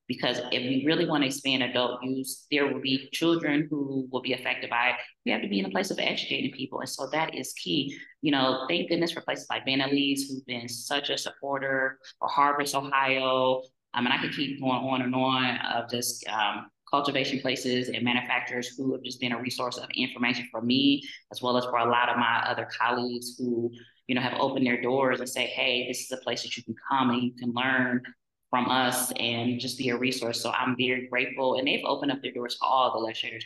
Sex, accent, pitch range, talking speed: female, American, 120-135 Hz, 230 wpm